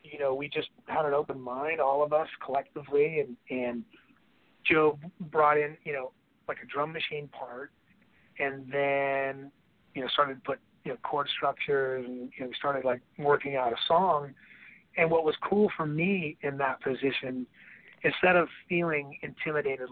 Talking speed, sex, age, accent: 175 wpm, male, 40-59, American